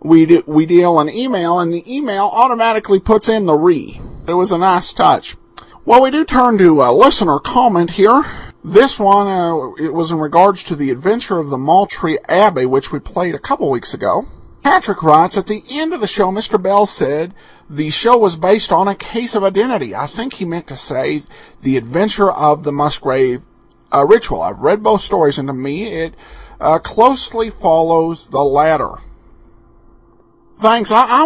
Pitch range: 145-210 Hz